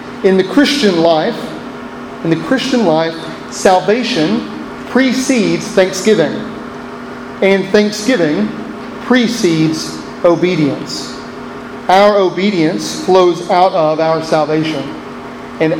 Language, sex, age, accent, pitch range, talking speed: English, male, 40-59, American, 165-210 Hz, 85 wpm